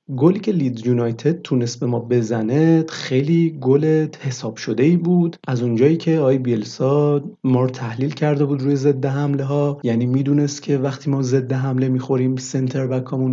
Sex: male